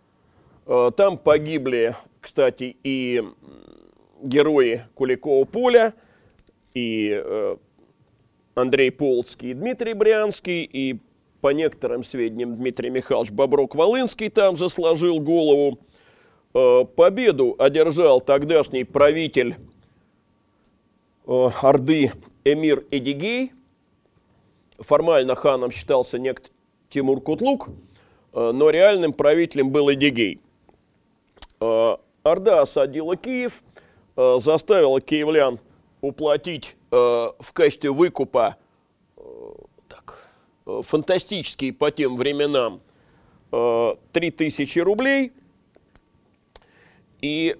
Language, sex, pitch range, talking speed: Russian, male, 135-220 Hz, 75 wpm